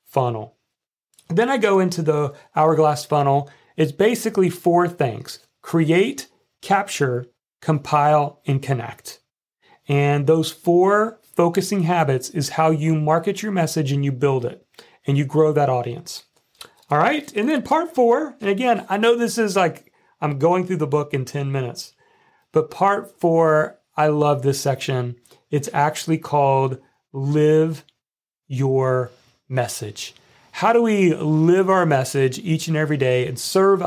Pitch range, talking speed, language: 140-185 Hz, 145 wpm, English